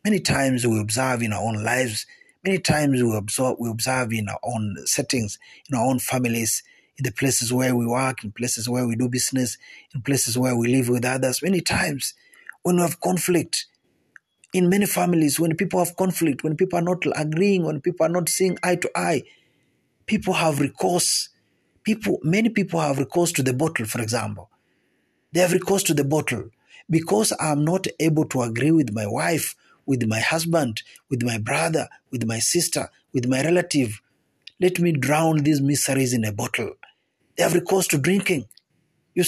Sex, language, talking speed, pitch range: male, Swahili, 185 wpm, 130-180 Hz